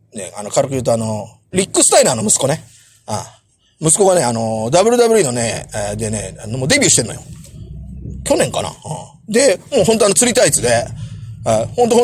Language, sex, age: Japanese, male, 40-59